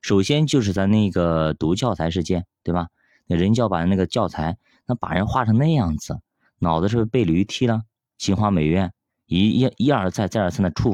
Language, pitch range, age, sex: Chinese, 85-120 Hz, 20-39, male